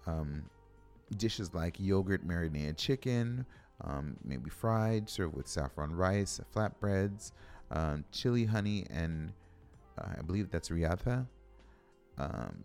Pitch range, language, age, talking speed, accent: 80-110 Hz, English, 30-49, 115 wpm, American